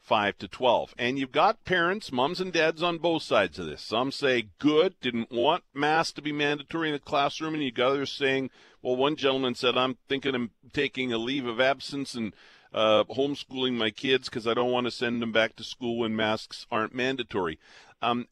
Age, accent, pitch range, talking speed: 50-69, American, 115-145 Hz, 210 wpm